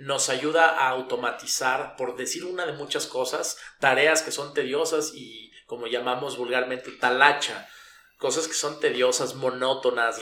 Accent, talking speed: Mexican, 140 wpm